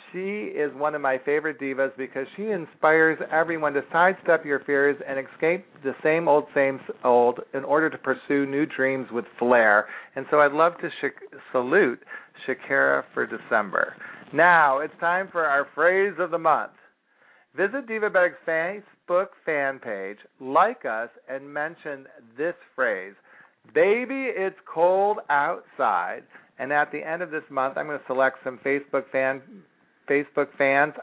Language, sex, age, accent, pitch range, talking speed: English, male, 40-59, American, 130-165 Hz, 155 wpm